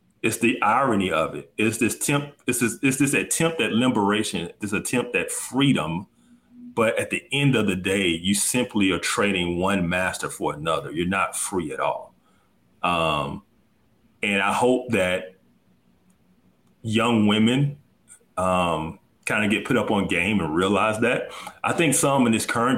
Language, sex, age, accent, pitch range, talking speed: English, male, 30-49, American, 90-120 Hz, 155 wpm